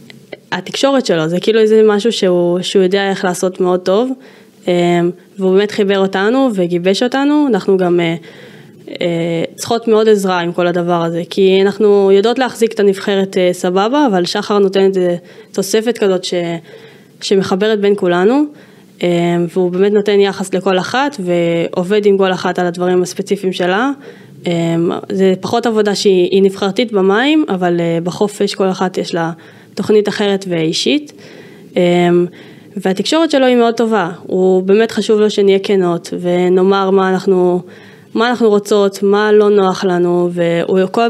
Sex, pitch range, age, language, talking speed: female, 180-210 Hz, 20-39, Hebrew, 140 wpm